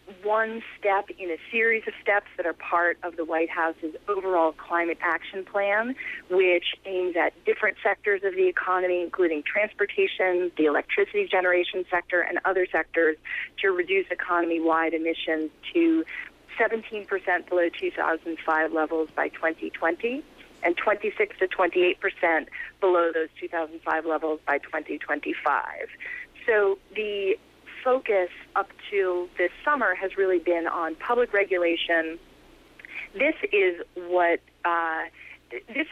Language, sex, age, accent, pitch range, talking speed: English, female, 30-49, American, 165-200 Hz, 125 wpm